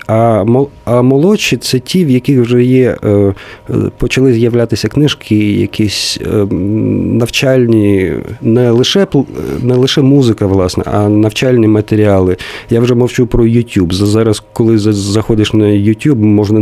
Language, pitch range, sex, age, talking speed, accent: Ukrainian, 105-120 Hz, male, 40-59, 125 wpm, native